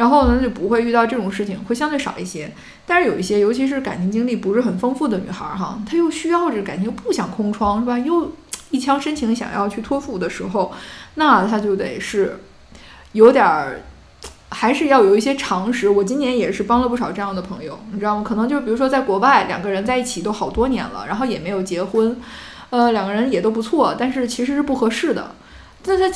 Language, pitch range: Chinese, 200-260 Hz